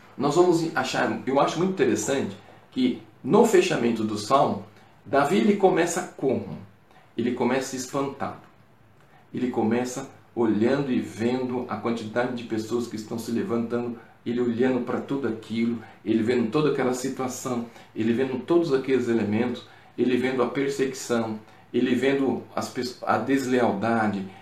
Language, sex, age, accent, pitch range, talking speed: Portuguese, male, 40-59, Brazilian, 115-135 Hz, 140 wpm